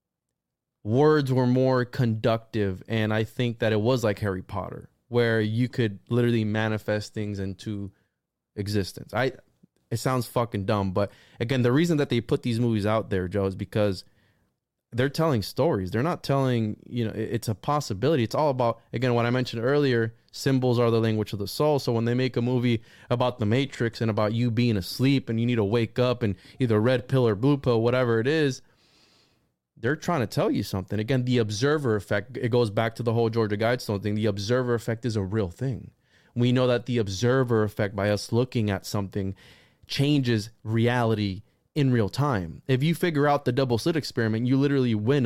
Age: 20-39